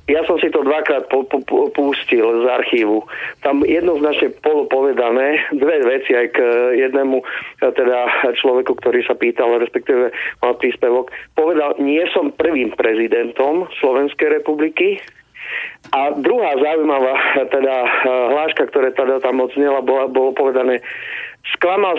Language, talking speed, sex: Slovak, 130 wpm, male